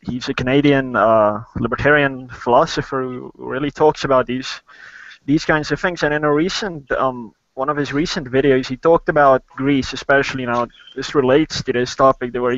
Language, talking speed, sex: English, 180 wpm, male